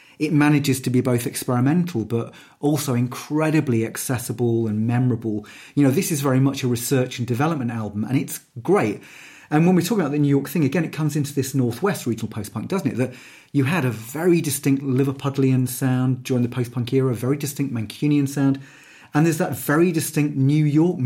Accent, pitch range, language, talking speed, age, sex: British, 120-145 Hz, English, 195 wpm, 30-49, male